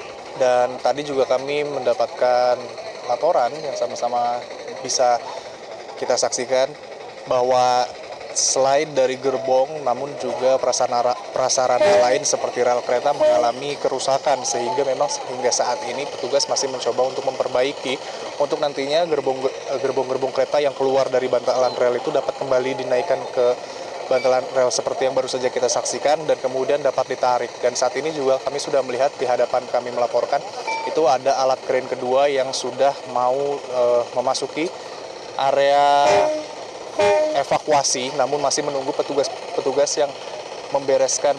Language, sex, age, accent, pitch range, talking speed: Indonesian, male, 20-39, native, 125-135 Hz, 130 wpm